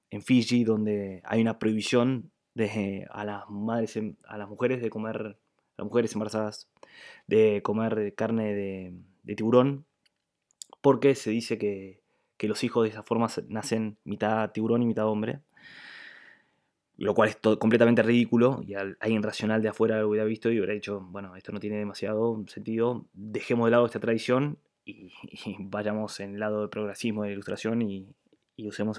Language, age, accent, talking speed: Spanish, 20-39, Argentinian, 175 wpm